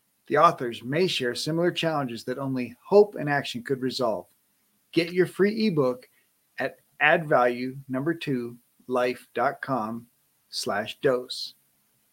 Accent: American